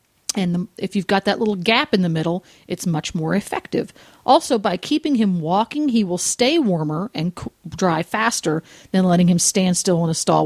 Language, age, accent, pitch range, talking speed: English, 40-59, American, 180-230 Hz, 195 wpm